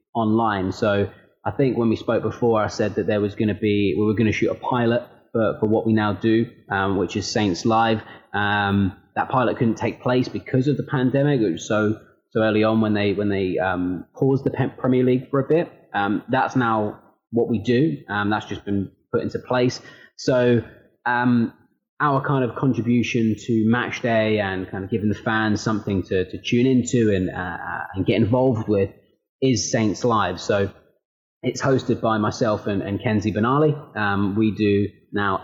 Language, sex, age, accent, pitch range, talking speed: English, male, 20-39, British, 105-125 Hz, 195 wpm